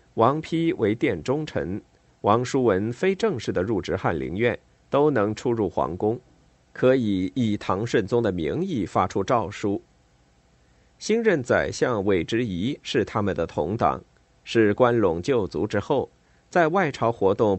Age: 50-69